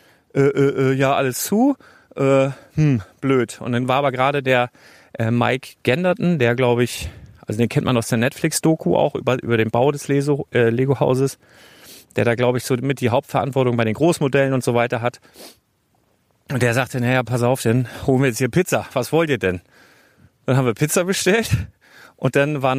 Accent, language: German, German